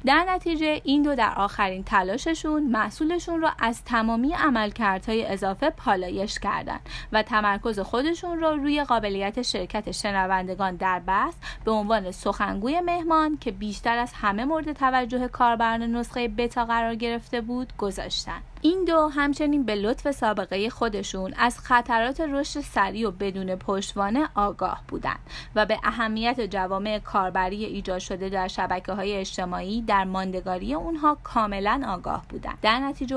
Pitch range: 195-255 Hz